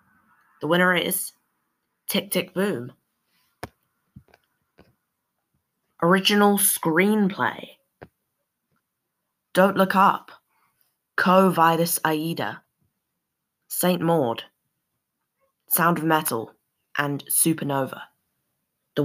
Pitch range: 145-180 Hz